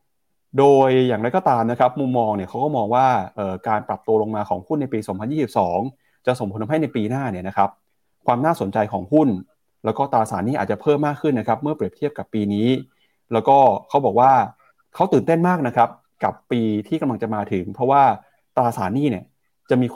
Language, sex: Thai, male